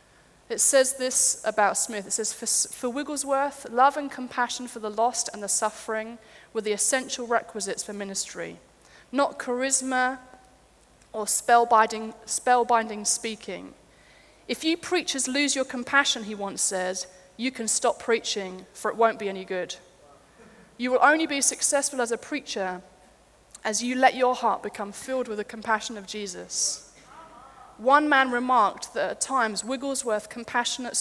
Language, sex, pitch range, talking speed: English, female, 205-255 Hz, 150 wpm